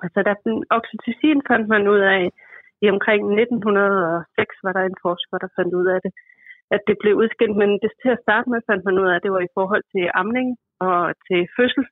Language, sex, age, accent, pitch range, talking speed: Danish, female, 30-49, native, 185-225 Hz, 210 wpm